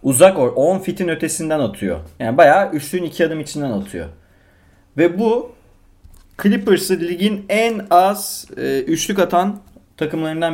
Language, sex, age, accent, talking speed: Turkish, male, 30-49, native, 130 wpm